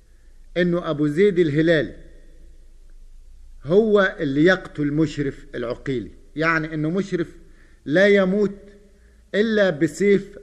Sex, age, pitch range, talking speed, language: male, 50-69, 140-180 Hz, 90 wpm, Arabic